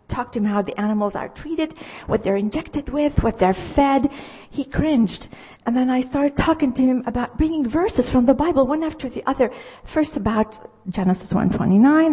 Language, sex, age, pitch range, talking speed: English, female, 50-69, 210-295 Hz, 190 wpm